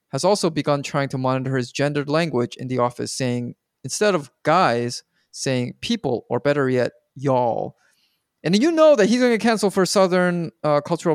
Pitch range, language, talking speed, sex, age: 125-160 Hz, English, 180 wpm, male, 30-49